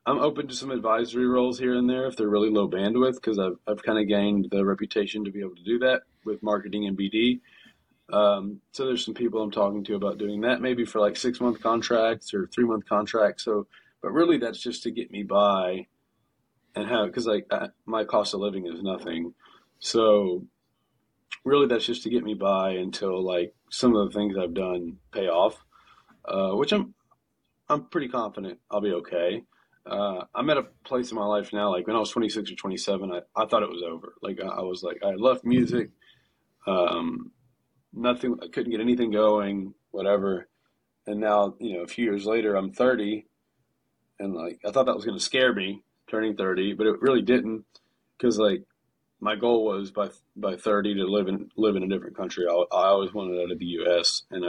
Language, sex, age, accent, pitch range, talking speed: English, male, 30-49, American, 95-120 Hz, 210 wpm